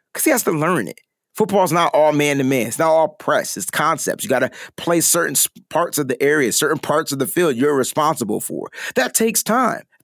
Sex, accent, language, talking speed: male, American, English, 225 wpm